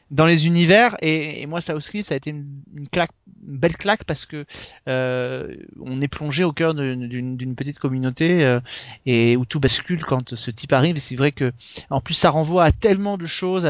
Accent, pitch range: French, 140-175 Hz